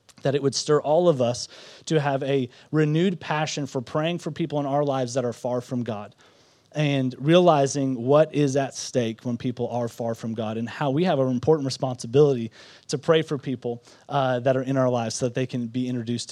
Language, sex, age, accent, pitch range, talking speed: English, male, 30-49, American, 130-165 Hz, 215 wpm